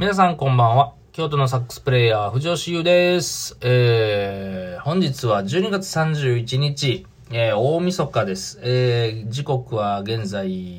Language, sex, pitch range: Japanese, male, 105-130 Hz